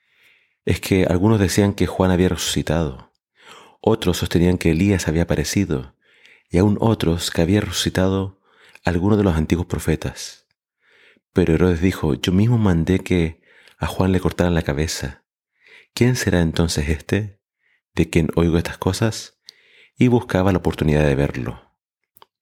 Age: 30-49